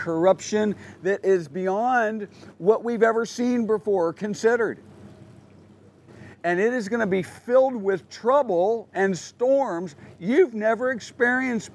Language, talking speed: English, 125 wpm